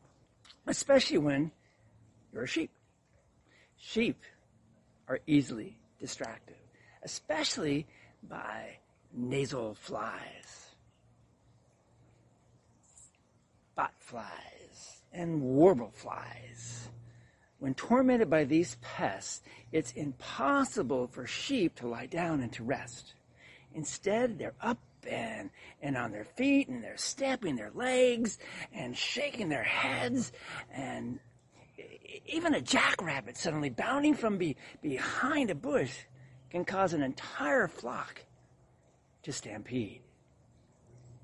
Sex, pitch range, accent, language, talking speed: male, 120-205 Hz, American, English, 100 wpm